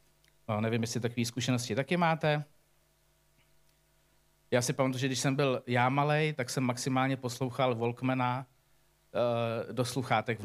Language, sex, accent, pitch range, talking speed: Czech, male, native, 125-160 Hz, 145 wpm